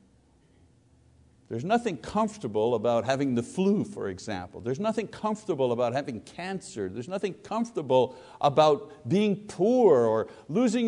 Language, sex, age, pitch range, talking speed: English, male, 60-79, 130-205 Hz, 125 wpm